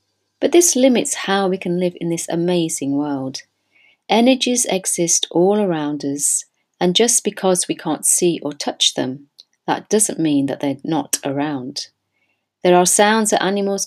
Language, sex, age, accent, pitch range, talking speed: English, female, 40-59, British, 145-190 Hz, 160 wpm